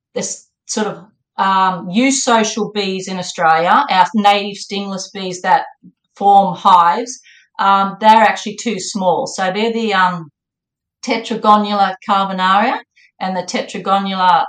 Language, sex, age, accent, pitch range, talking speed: English, female, 40-59, Australian, 185-215 Hz, 120 wpm